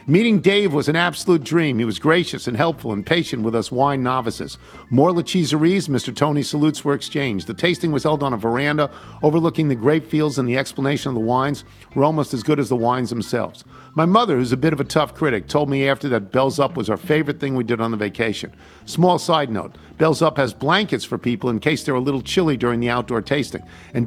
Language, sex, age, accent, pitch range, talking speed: English, male, 50-69, American, 115-150 Hz, 230 wpm